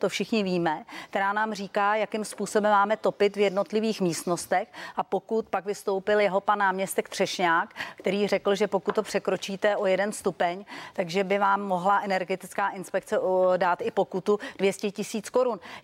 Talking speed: 160 wpm